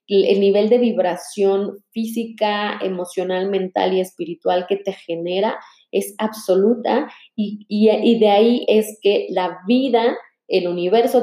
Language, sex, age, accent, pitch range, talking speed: Spanish, female, 20-39, Mexican, 180-215 Hz, 130 wpm